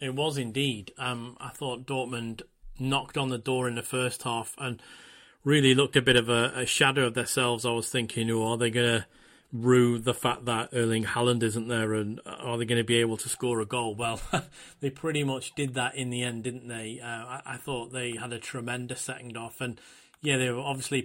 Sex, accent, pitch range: male, British, 115-130 Hz